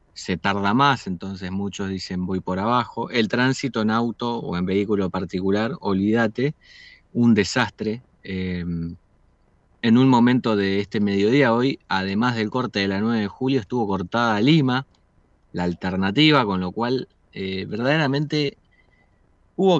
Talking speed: 140 wpm